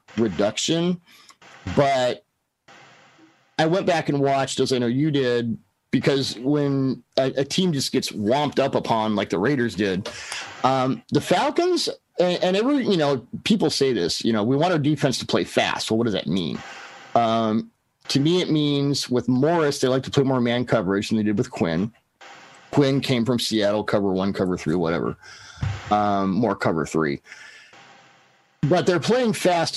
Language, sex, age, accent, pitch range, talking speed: English, male, 40-59, American, 115-155 Hz, 175 wpm